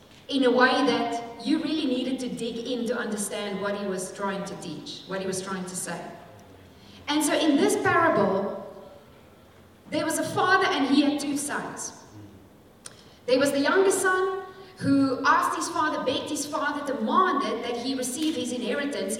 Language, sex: English, female